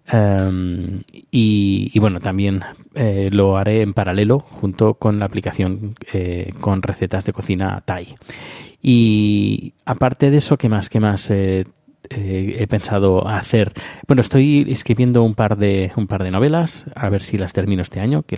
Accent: Spanish